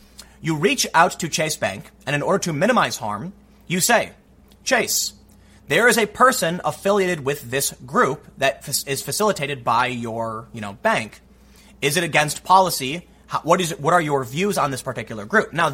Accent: American